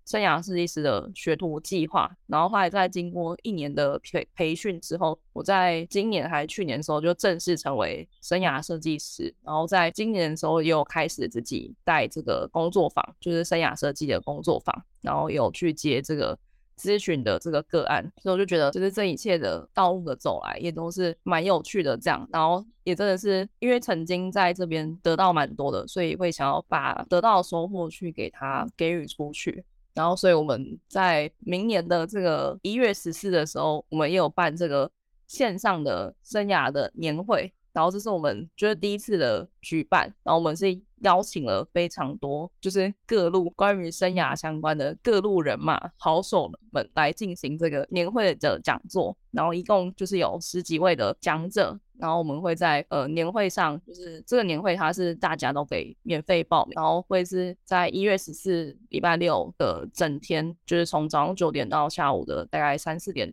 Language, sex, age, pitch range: Chinese, female, 20-39, 160-190 Hz